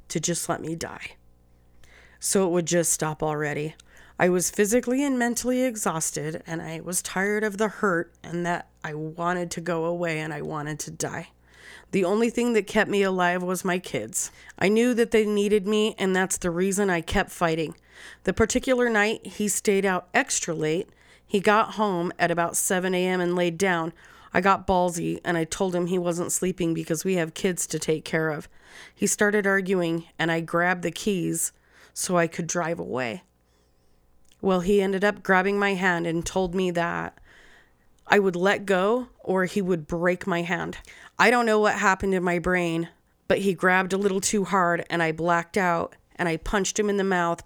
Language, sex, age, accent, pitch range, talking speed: English, female, 30-49, American, 170-200 Hz, 195 wpm